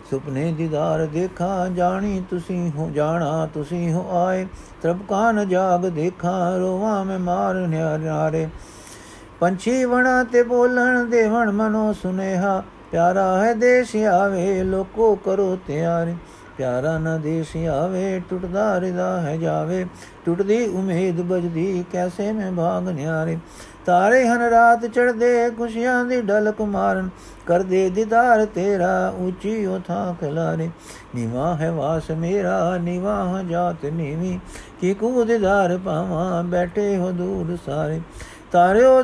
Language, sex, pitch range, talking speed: Punjabi, male, 170-210 Hz, 115 wpm